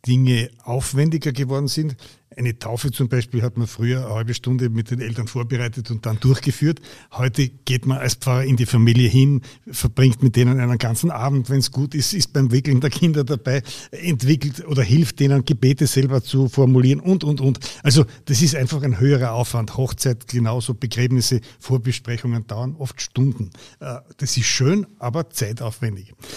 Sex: male